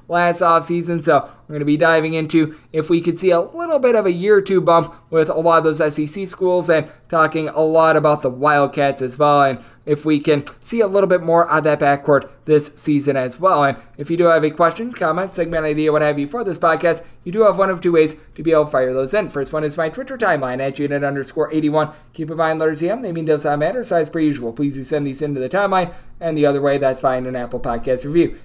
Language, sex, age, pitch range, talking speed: English, male, 20-39, 150-175 Hz, 260 wpm